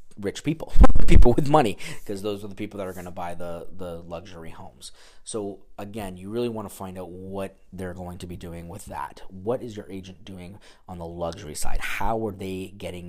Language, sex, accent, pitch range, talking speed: English, male, American, 90-105 Hz, 220 wpm